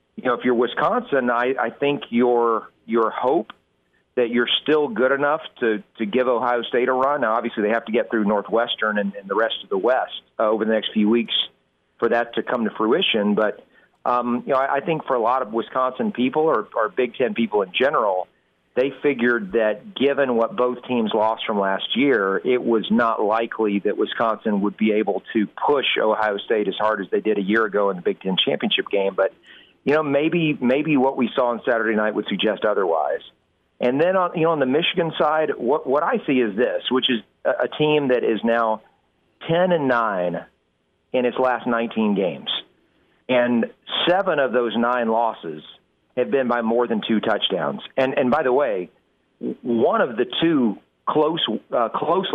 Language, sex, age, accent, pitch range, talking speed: English, male, 40-59, American, 105-130 Hz, 205 wpm